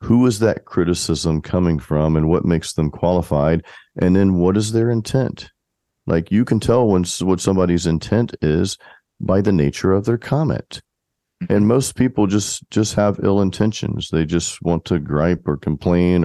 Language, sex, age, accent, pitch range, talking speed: English, male, 40-59, American, 80-95 Hz, 175 wpm